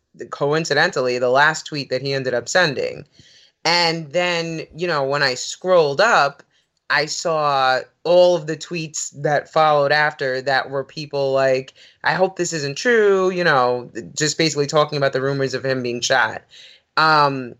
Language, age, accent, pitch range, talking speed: English, 30-49, American, 135-170 Hz, 165 wpm